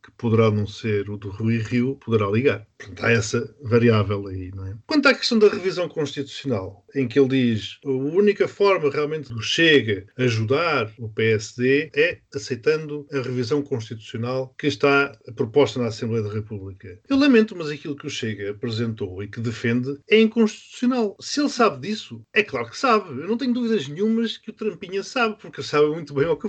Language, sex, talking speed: Portuguese, male, 190 wpm